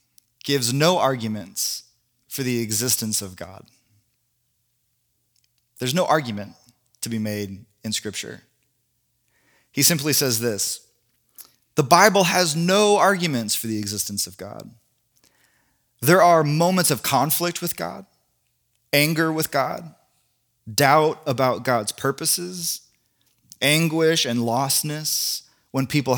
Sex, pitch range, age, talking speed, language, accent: male, 115-145 Hz, 20-39, 110 wpm, English, American